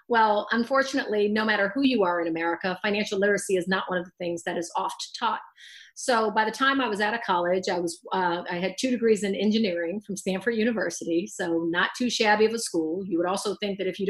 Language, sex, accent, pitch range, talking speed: English, female, American, 185-220 Hz, 240 wpm